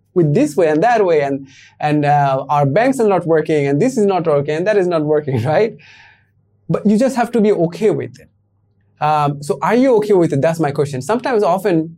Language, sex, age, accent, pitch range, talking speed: English, male, 20-39, Indian, 145-200 Hz, 230 wpm